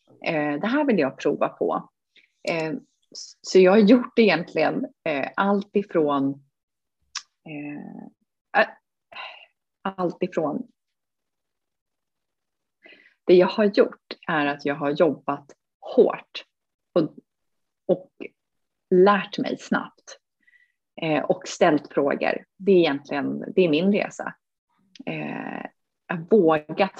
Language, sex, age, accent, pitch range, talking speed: English, female, 30-49, Swedish, 145-210 Hz, 95 wpm